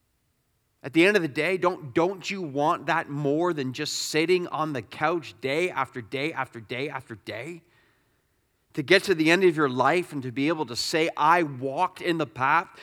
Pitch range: 130-185 Hz